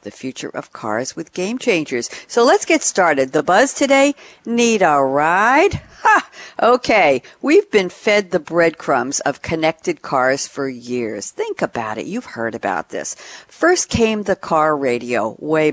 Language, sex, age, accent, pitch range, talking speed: English, female, 60-79, American, 145-235 Hz, 160 wpm